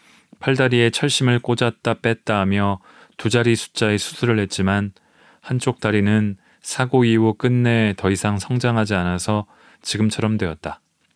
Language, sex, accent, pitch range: Korean, male, native, 100-125 Hz